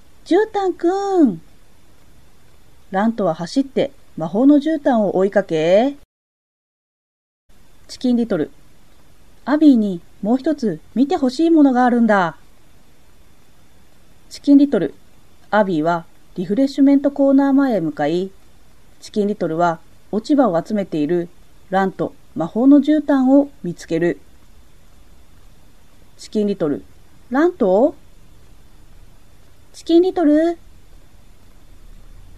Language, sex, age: Japanese, female, 40-59